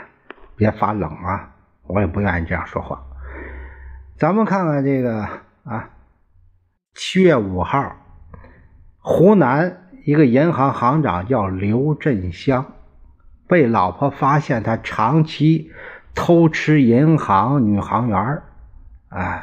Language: Chinese